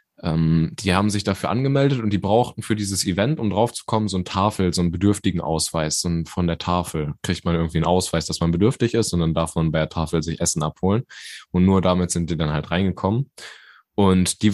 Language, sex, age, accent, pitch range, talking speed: German, male, 10-29, German, 90-110 Hz, 225 wpm